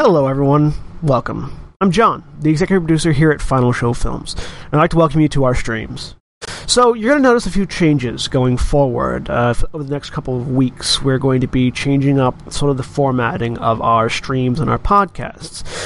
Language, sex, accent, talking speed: English, male, American, 210 wpm